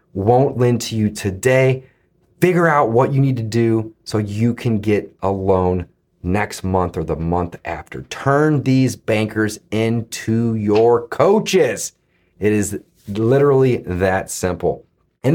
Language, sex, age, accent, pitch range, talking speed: English, male, 30-49, American, 105-160 Hz, 140 wpm